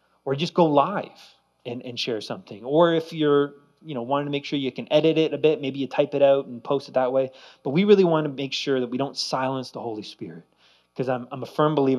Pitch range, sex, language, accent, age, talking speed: 125-160 Hz, male, English, American, 30-49, 265 wpm